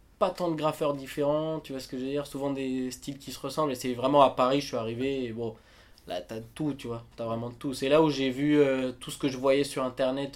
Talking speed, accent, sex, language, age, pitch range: 285 wpm, French, male, French, 20-39, 120-145 Hz